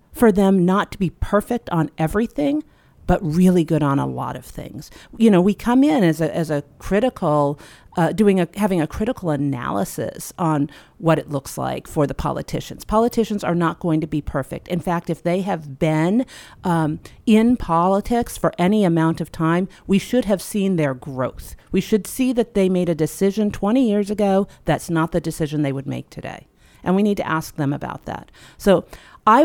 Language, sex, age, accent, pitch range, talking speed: English, female, 40-59, American, 155-205 Hz, 200 wpm